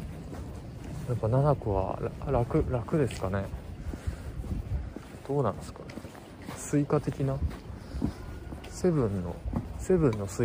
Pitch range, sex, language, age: 95-130 Hz, male, Japanese, 20-39